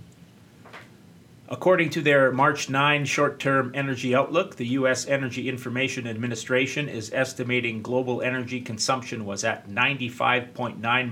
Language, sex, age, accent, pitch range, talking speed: English, male, 30-49, American, 115-130 Hz, 115 wpm